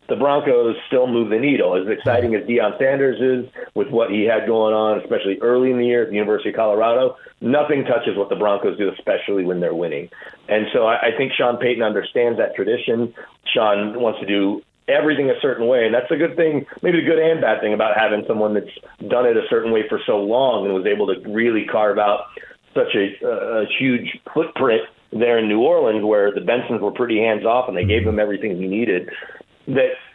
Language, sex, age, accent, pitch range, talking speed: English, male, 40-59, American, 110-145 Hz, 215 wpm